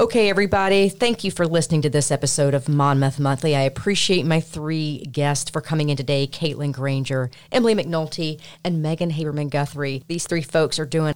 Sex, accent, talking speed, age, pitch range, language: female, American, 185 wpm, 40-59, 145-200 Hz, English